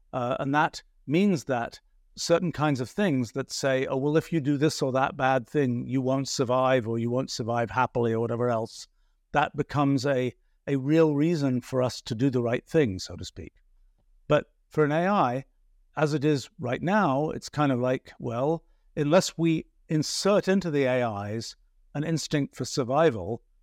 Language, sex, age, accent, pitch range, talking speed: English, male, 50-69, British, 120-155 Hz, 185 wpm